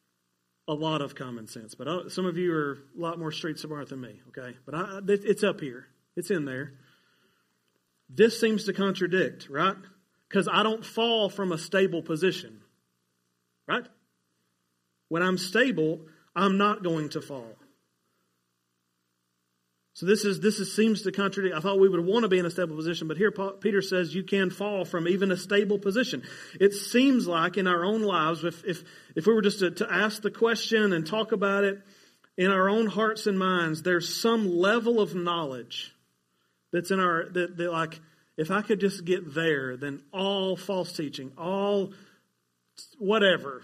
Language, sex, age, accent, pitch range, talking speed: English, male, 40-59, American, 150-200 Hz, 180 wpm